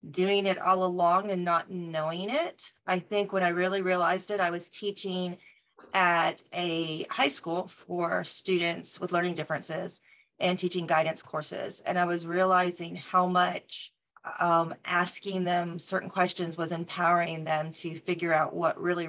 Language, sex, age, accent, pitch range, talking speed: English, female, 40-59, American, 165-185 Hz, 155 wpm